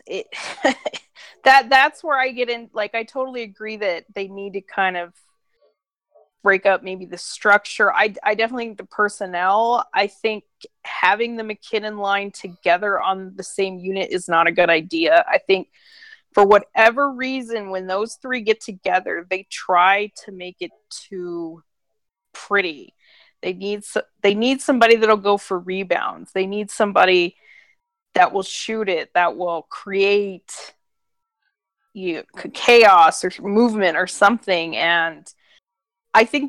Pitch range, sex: 185-240 Hz, female